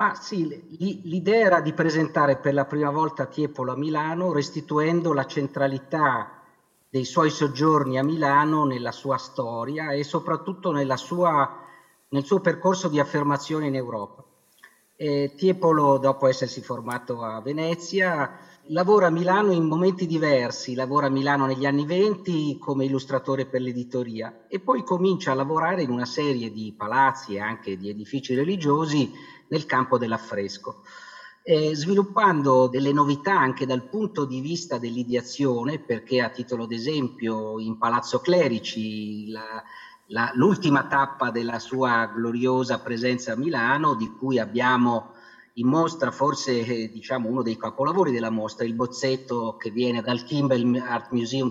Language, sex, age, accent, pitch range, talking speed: Italian, male, 50-69, native, 120-155 Hz, 145 wpm